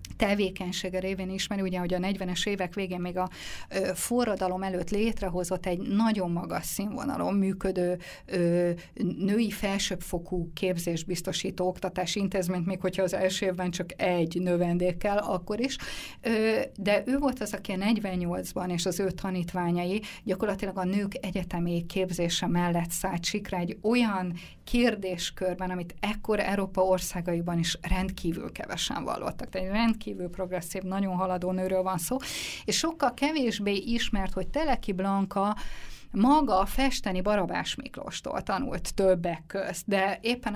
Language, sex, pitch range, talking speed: Hungarian, female, 180-205 Hz, 135 wpm